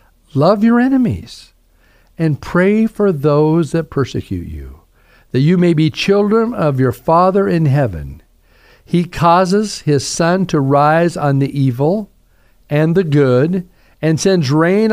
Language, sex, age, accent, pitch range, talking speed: English, male, 50-69, American, 125-195 Hz, 140 wpm